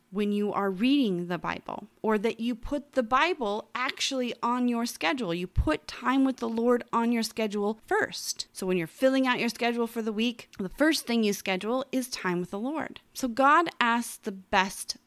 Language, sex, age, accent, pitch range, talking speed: English, female, 30-49, American, 190-255 Hz, 205 wpm